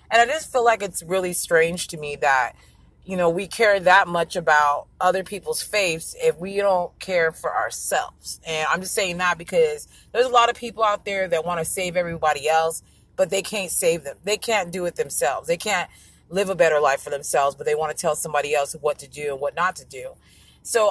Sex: female